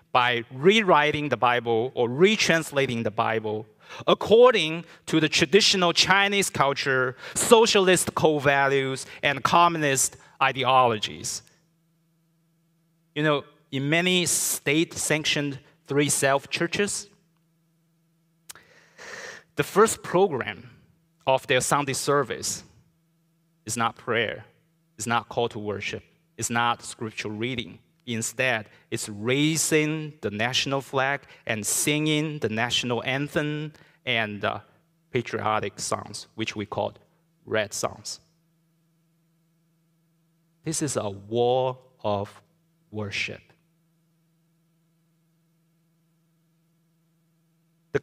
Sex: male